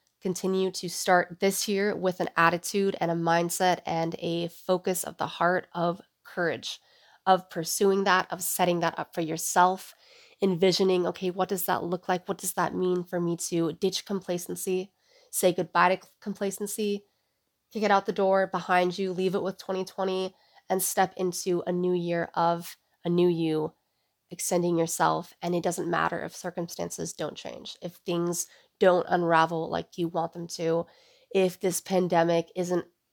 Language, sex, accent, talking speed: English, female, American, 165 wpm